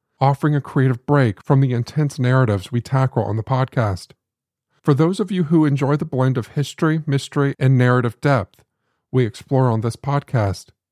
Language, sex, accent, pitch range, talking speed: English, male, American, 120-145 Hz, 175 wpm